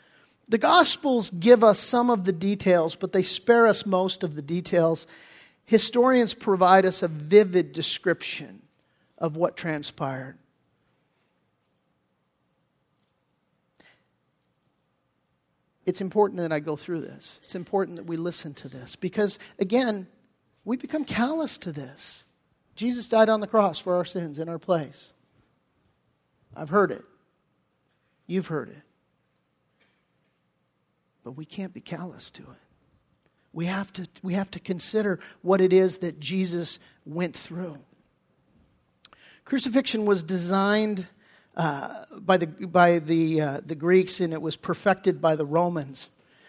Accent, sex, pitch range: American, male, 165-200 Hz